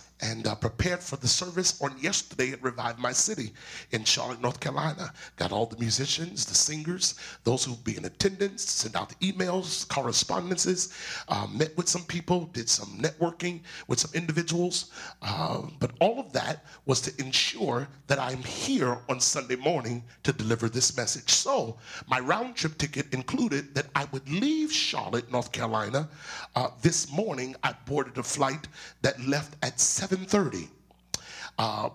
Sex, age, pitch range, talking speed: male, 40-59, 120-170 Hz, 160 wpm